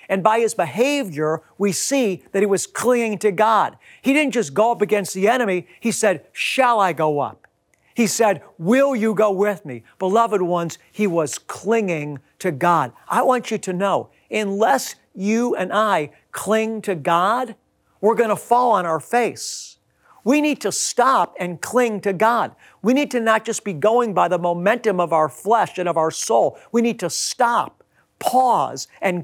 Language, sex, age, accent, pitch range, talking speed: English, male, 50-69, American, 160-220 Hz, 185 wpm